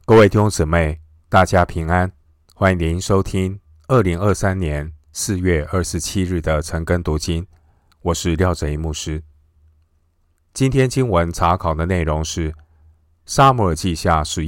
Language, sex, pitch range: Chinese, male, 80-90 Hz